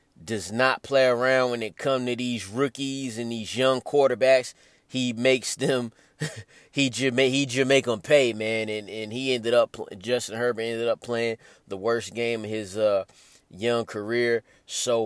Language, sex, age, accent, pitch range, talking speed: English, male, 20-39, American, 120-140 Hz, 180 wpm